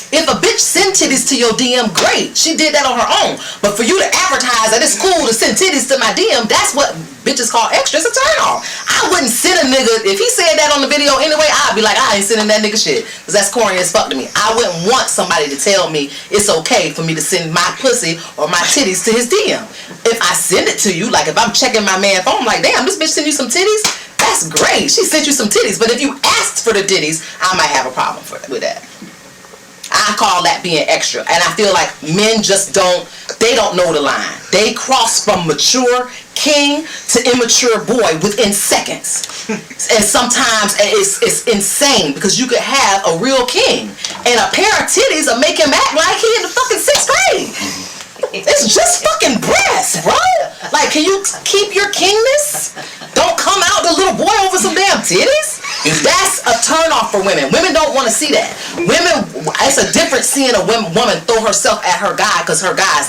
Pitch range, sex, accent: 210-315 Hz, female, American